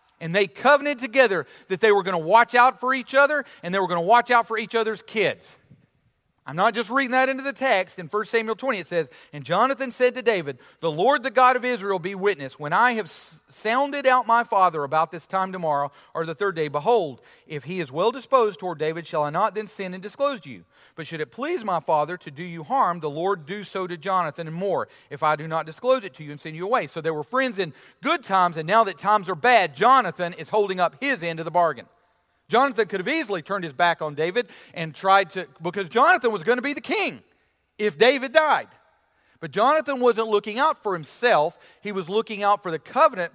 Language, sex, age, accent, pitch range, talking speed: English, male, 40-59, American, 160-230 Hz, 240 wpm